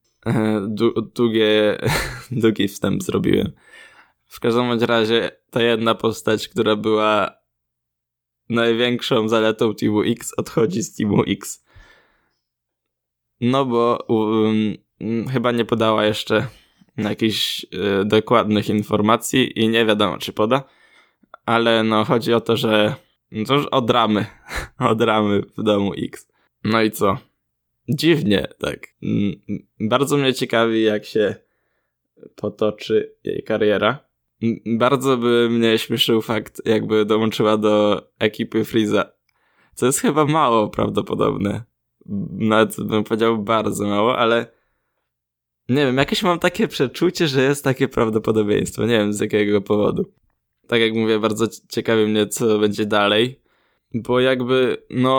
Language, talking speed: Polish, 120 wpm